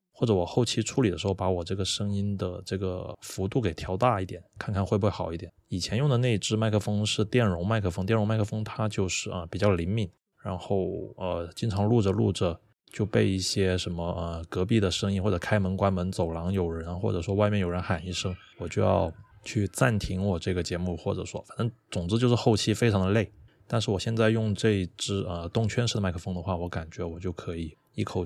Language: Chinese